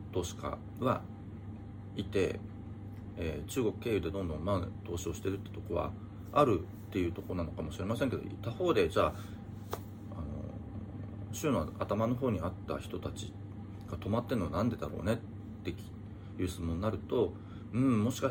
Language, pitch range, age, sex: Japanese, 95-110 Hz, 40-59, male